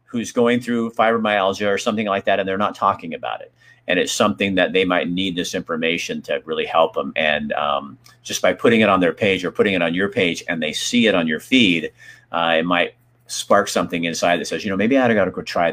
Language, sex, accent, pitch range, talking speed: English, male, American, 95-120 Hz, 250 wpm